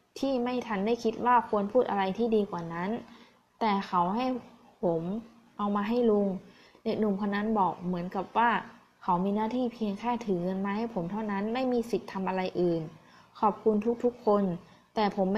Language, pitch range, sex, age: Thai, 185-230 Hz, female, 20-39